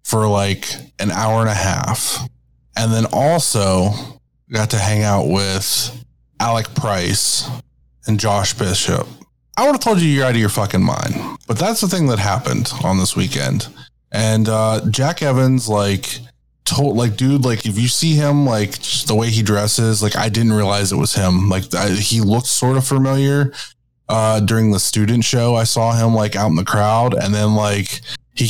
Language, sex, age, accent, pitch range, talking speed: English, male, 20-39, American, 100-120 Hz, 190 wpm